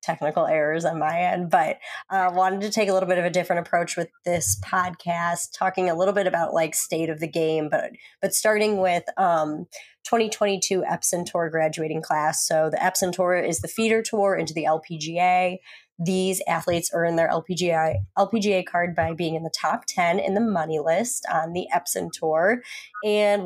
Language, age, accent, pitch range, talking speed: English, 20-39, American, 160-185 Hz, 190 wpm